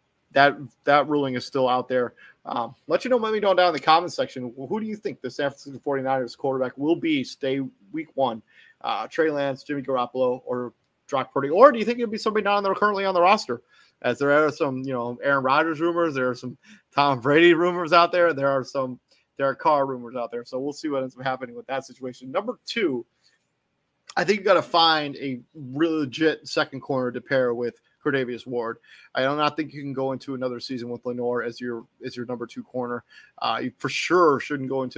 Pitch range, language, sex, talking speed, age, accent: 125-150 Hz, English, male, 230 wpm, 30-49, American